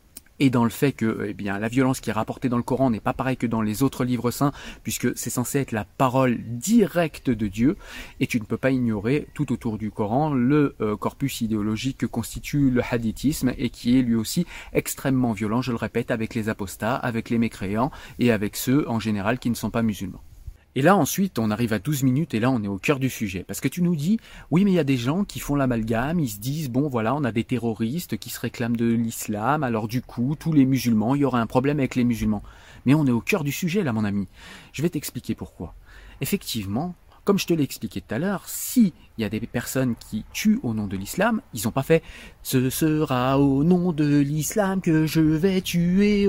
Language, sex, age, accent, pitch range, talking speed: French, male, 30-49, French, 110-155 Hz, 240 wpm